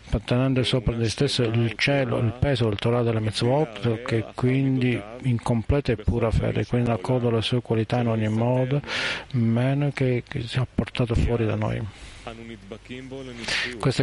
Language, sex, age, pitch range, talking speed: Italian, male, 50-69, 115-130 Hz, 155 wpm